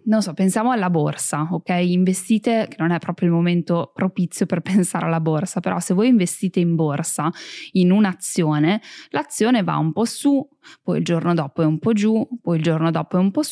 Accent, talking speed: native, 205 wpm